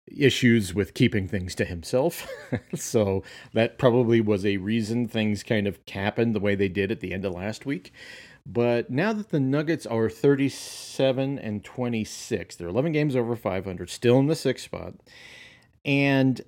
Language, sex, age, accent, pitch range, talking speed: English, male, 40-59, American, 95-120 Hz, 170 wpm